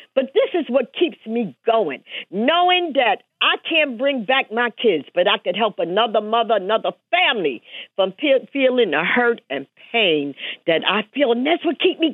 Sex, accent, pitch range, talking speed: female, American, 185-305 Hz, 185 wpm